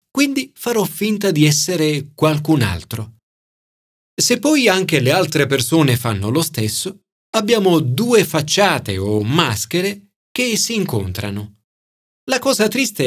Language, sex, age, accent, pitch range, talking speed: Italian, male, 40-59, native, 120-195 Hz, 125 wpm